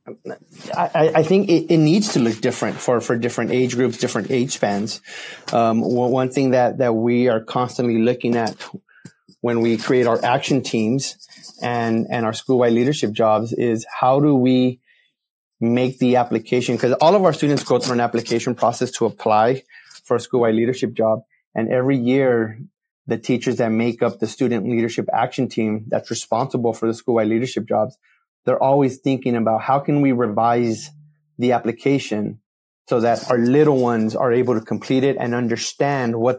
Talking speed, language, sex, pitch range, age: 175 wpm, English, male, 115-130 Hz, 30-49